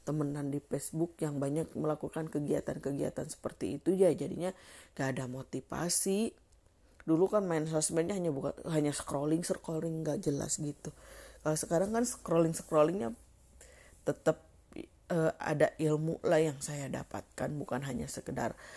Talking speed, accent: 135 wpm, native